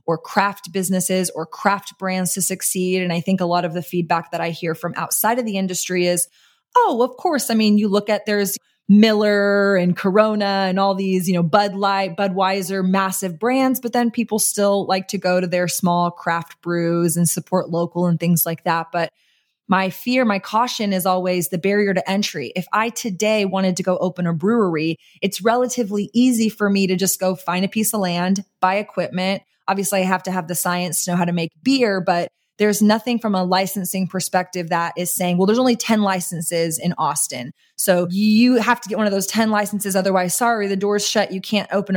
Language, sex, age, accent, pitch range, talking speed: English, female, 20-39, American, 180-210 Hz, 215 wpm